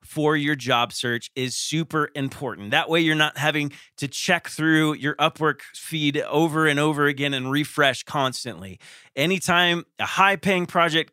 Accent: American